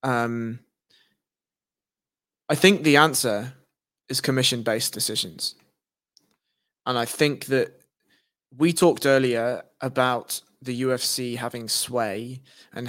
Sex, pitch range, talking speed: male, 120-150 Hz, 100 wpm